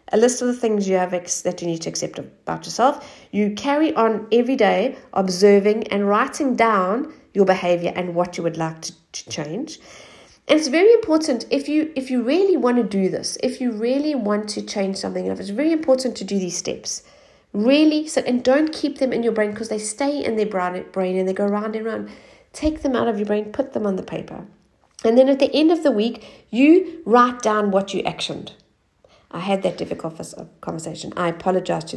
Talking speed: 215 wpm